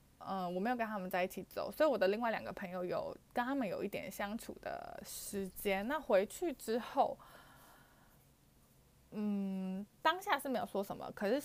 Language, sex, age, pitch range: Chinese, female, 20-39, 185-235 Hz